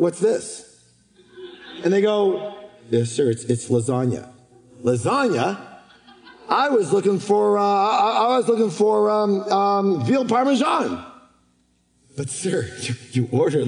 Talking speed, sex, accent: 125 wpm, male, American